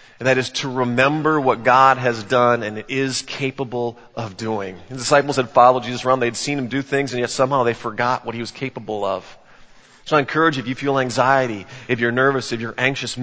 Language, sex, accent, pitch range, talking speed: English, male, American, 115-145 Hz, 225 wpm